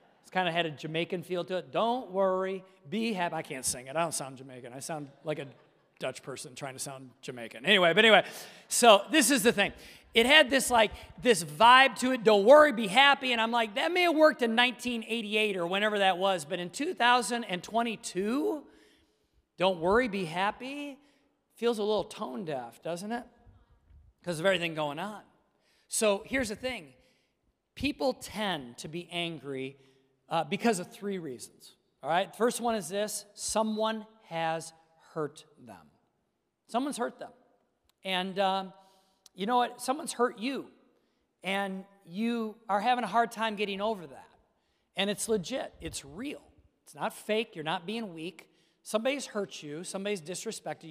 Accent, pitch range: American, 170-235 Hz